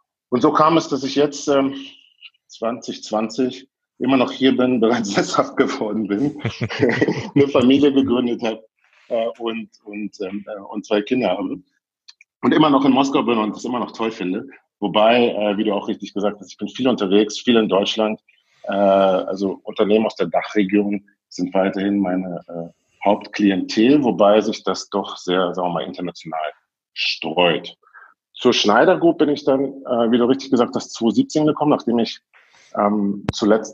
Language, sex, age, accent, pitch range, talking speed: German, male, 50-69, German, 100-130 Hz, 165 wpm